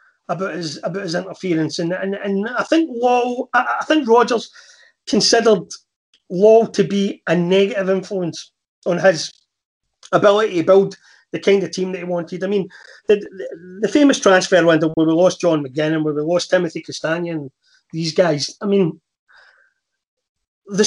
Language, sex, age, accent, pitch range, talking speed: English, male, 30-49, British, 185-255 Hz, 165 wpm